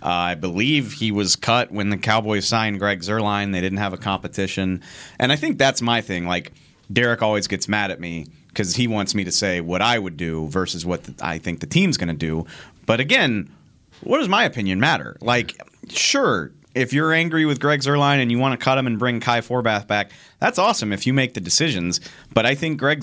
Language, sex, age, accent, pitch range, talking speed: English, male, 30-49, American, 90-125 Hz, 225 wpm